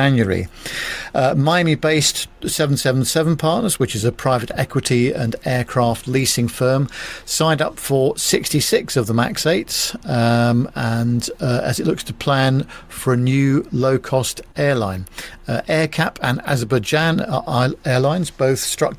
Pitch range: 120-150 Hz